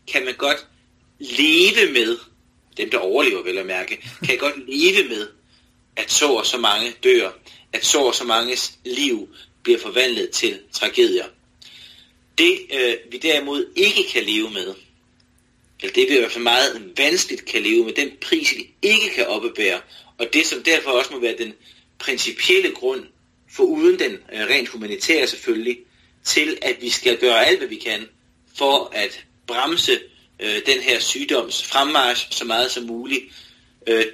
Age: 30-49